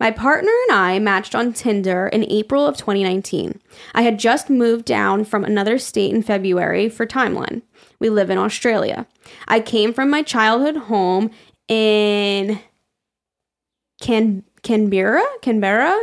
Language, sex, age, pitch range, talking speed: English, female, 10-29, 205-260 Hz, 140 wpm